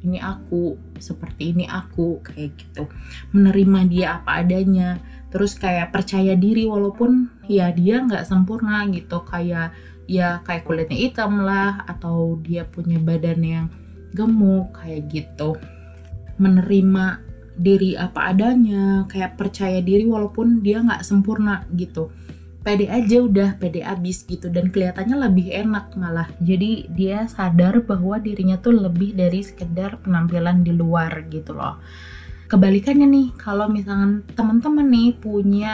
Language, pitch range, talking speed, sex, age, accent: Indonesian, 170-200 Hz, 135 wpm, female, 20-39, native